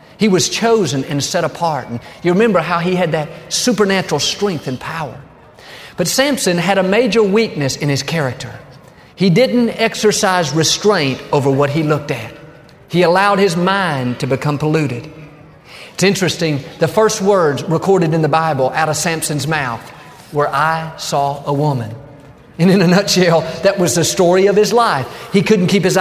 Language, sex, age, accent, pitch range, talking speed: English, male, 40-59, American, 145-195 Hz, 175 wpm